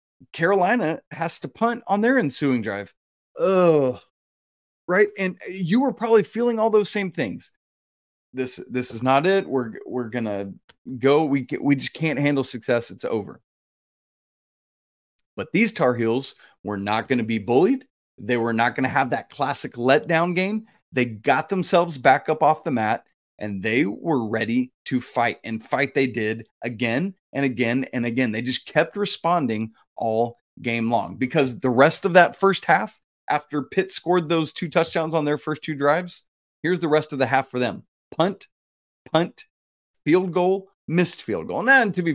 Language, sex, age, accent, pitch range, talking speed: English, male, 30-49, American, 120-185 Hz, 175 wpm